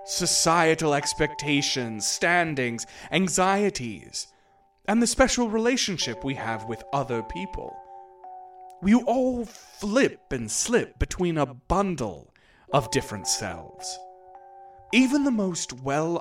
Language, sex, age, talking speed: English, male, 30-49, 105 wpm